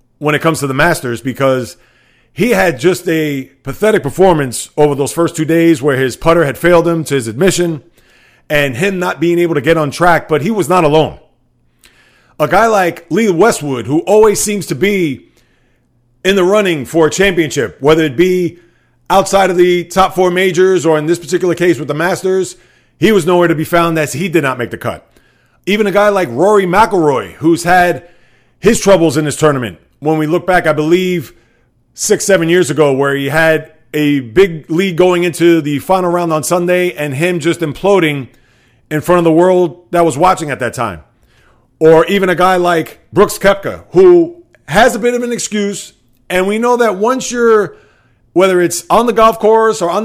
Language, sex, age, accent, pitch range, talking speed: English, male, 30-49, American, 150-190 Hz, 200 wpm